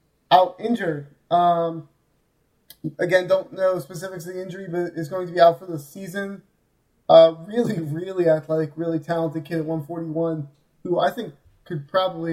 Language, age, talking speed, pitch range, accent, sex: English, 20-39, 160 wpm, 165-185 Hz, American, male